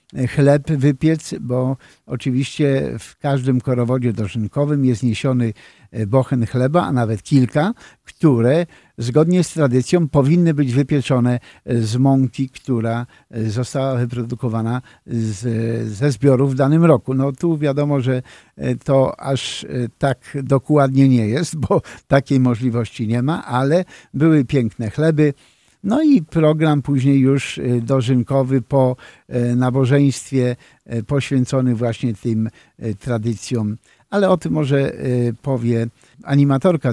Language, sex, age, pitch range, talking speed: Polish, male, 50-69, 120-140 Hz, 115 wpm